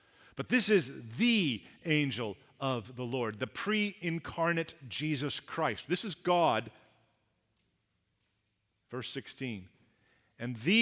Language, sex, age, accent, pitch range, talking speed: English, male, 40-59, American, 120-175 Hz, 105 wpm